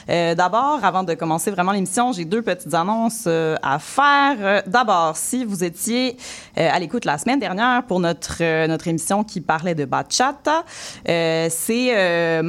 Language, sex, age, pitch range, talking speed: French, female, 20-39, 165-220 Hz, 180 wpm